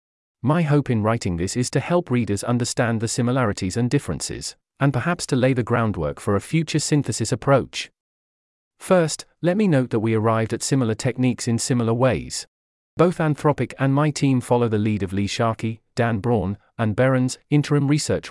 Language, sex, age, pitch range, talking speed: English, male, 40-59, 110-140 Hz, 180 wpm